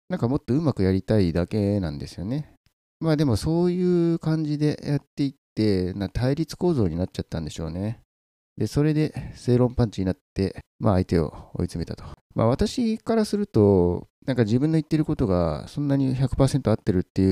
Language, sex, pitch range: Japanese, male, 90-125 Hz